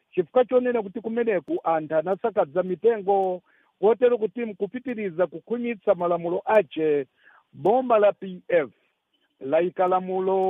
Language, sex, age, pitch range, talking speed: English, male, 50-69, 180-225 Hz, 125 wpm